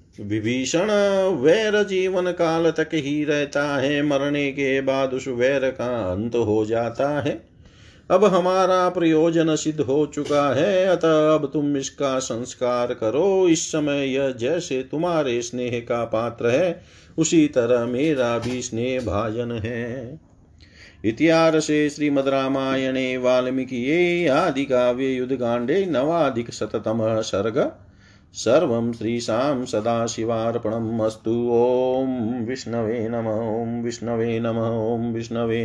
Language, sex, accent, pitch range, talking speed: Hindi, male, native, 115-160 Hz, 120 wpm